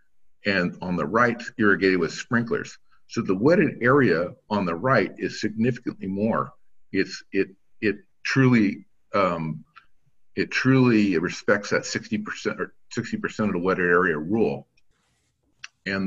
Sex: male